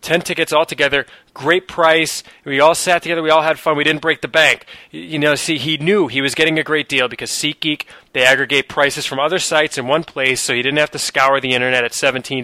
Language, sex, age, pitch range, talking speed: English, male, 20-39, 125-160 Hz, 245 wpm